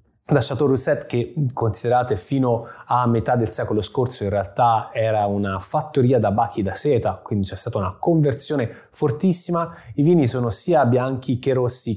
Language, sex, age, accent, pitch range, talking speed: Italian, male, 20-39, native, 110-140 Hz, 165 wpm